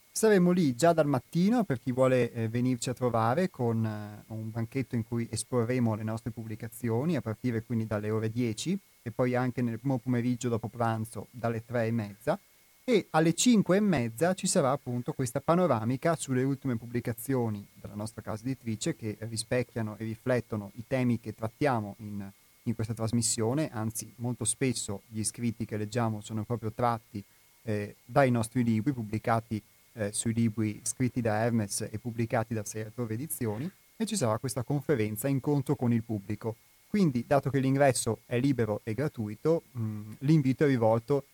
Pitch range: 110-140 Hz